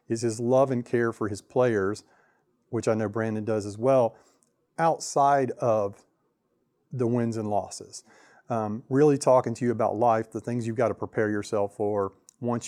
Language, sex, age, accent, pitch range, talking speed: English, male, 40-59, American, 110-130 Hz, 175 wpm